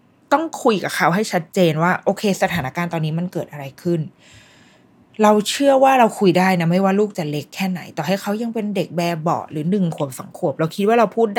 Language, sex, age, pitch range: Thai, female, 20-39, 160-215 Hz